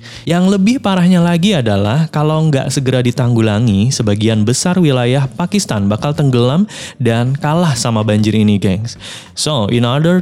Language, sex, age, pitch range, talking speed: Indonesian, male, 20-39, 110-145 Hz, 140 wpm